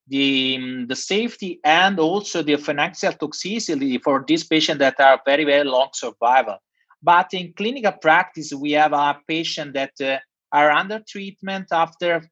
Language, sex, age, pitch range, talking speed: English, male, 30-49, 155-195 Hz, 150 wpm